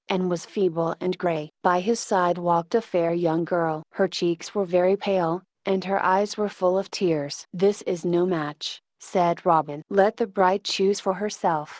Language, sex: English, female